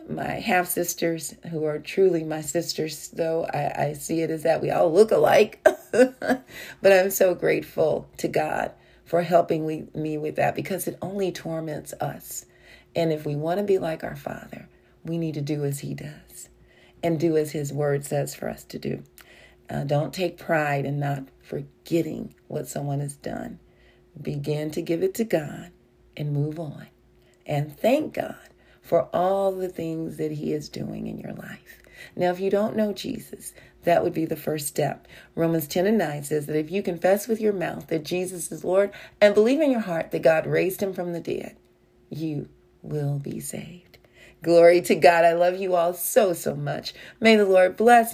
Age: 40-59